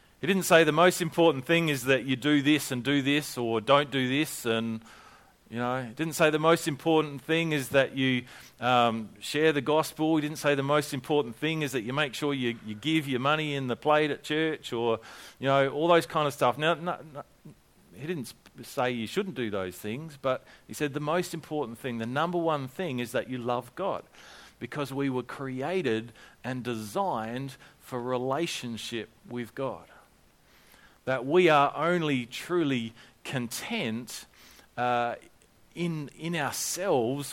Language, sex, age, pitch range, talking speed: English, male, 40-59, 125-160 Hz, 180 wpm